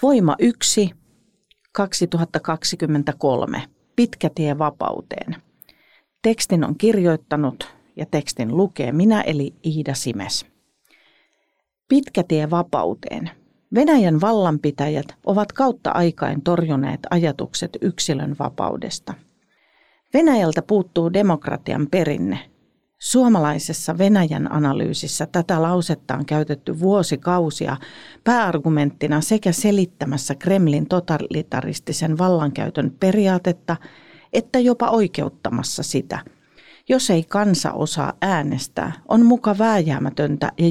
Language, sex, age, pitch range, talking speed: Finnish, female, 40-59, 150-200 Hz, 85 wpm